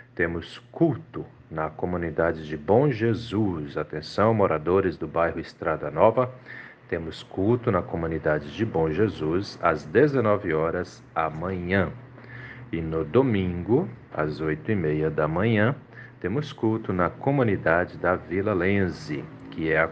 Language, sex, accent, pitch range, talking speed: Portuguese, male, Brazilian, 85-125 Hz, 125 wpm